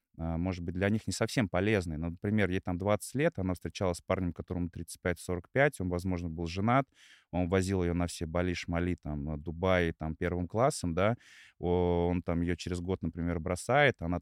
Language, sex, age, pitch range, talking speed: Russian, male, 20-39, 85-100 Hz, 175 wpm